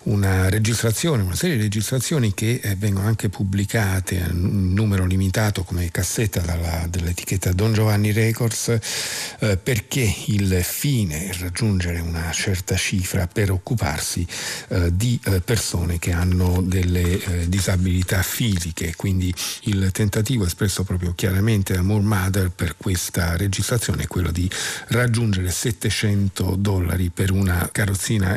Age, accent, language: 50-69, native, Italian